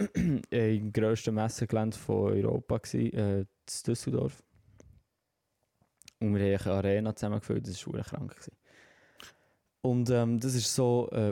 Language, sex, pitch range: German, male, 105-125 Hz